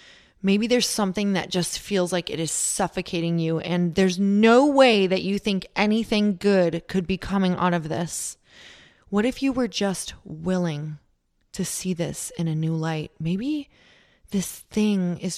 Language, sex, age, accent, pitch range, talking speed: English, female, 20-39, American, 175-205 Hz, 170 wpm